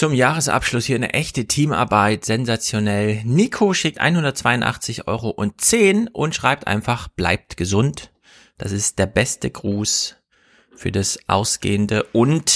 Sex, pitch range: male, 105-135 Hz